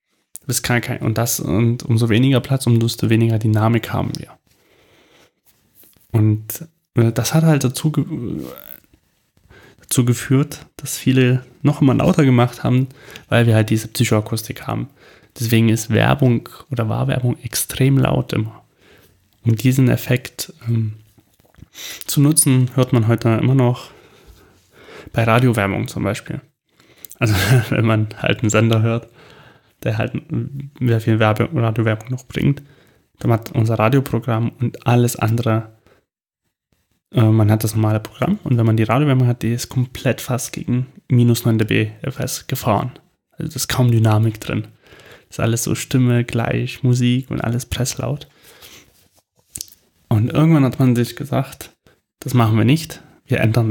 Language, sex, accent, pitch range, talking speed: German, male, German, 115-135 Hz, 145 wpm